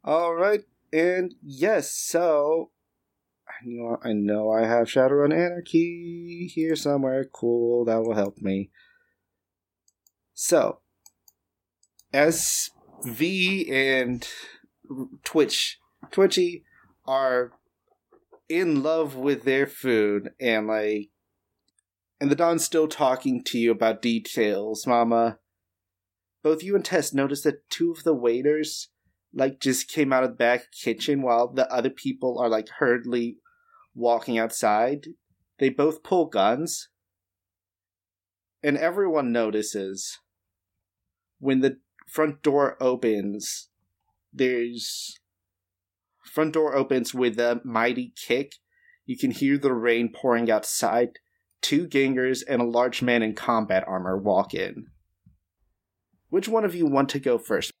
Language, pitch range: English, 110-155 Hz